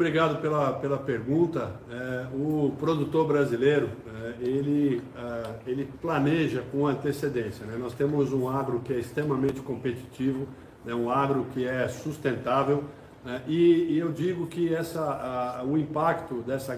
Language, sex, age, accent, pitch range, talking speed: Portuguese, male, 60-79, Brazilian, 135-165 Hz, 150 wpm